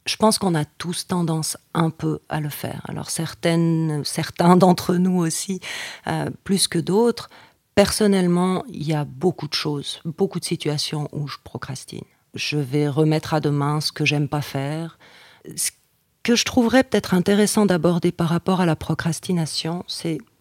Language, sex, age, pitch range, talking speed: French, female, 40-59, 150-185 Hz, 170 wpm